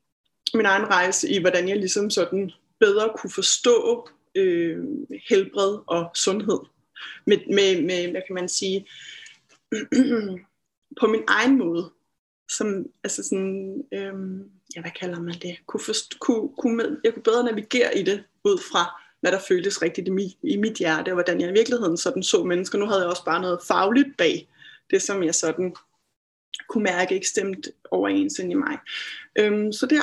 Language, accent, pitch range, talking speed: English, Danish, 190-255 Hz, 155 wpm